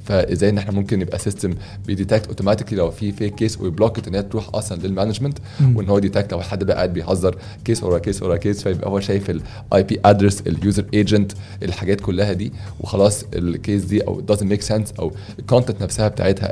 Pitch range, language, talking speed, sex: 95-115 Hz, Arabic, 190 wpm, male